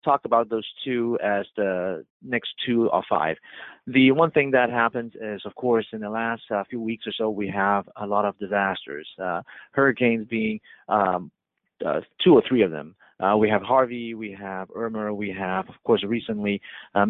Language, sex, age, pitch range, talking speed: English, male, 30-49, 105-120 Hz, 195 wpm